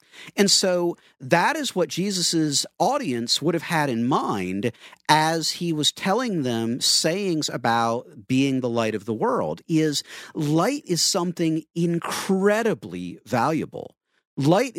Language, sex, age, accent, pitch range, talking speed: English, male, 50-69, American, 140-195 Hz, 130 wpm